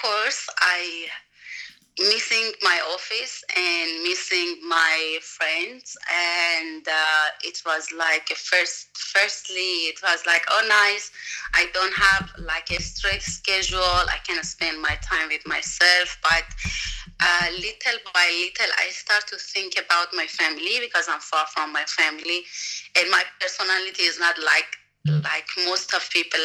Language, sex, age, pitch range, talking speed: English, female, 30-49, 160-195 Hz, 145 wpm